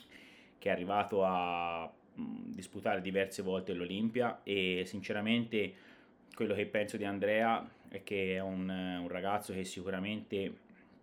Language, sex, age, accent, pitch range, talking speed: Italian, male, 20-39, native, 95-105 Hz, 120 wpm